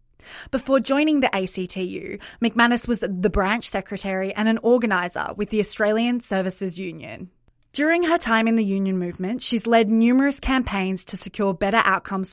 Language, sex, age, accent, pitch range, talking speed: English, female, 20-39, Australian, 200-240 Hz, 155 wpm